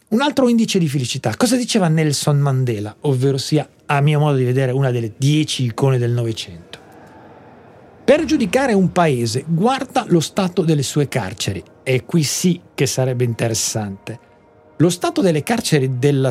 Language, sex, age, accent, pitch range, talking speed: Italian, male, 40-59, native, 130-180 Hz, 160 wpm